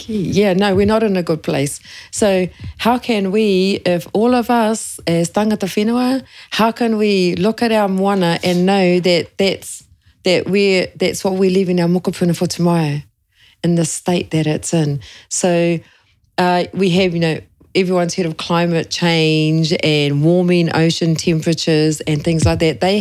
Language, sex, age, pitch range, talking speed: English, female, 40-59, 160-190 Hz, 170 wpm